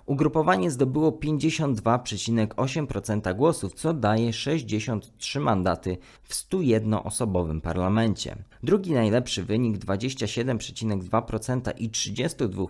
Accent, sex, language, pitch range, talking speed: native, male, Polish, 105-135 Hz, 80 wpm